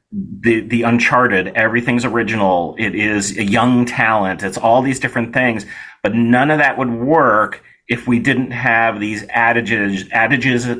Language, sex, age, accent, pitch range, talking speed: English, male, 30-49, American, 105-130 Hz, 155 wpm